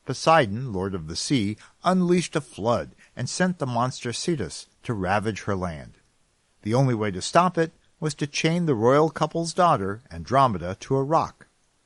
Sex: male